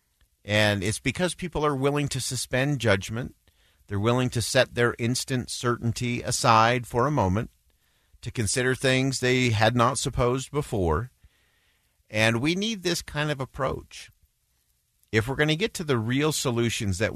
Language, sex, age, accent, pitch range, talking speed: English, male, 50-69, American, 90-120 Hz, 155 wpm